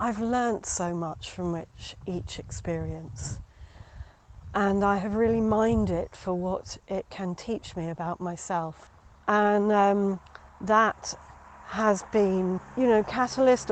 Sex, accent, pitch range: female, British, 170-225 Hz